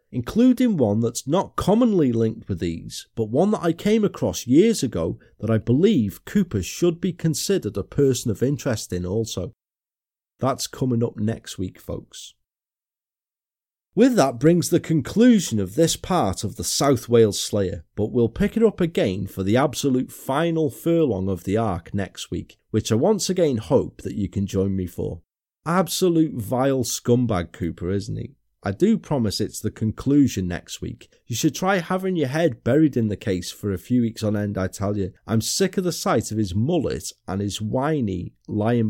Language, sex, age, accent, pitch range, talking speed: English, male, 40-59, British, 100-165 Hz, 185 wpm